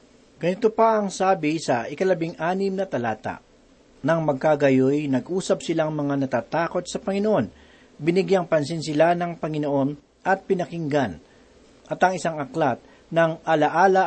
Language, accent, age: Filipino, native, 50-69